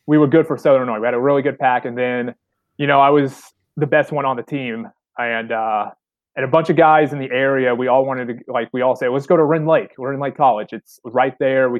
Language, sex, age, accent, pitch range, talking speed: English, male, 20-39, American, 120-150 Hz, 280 wpm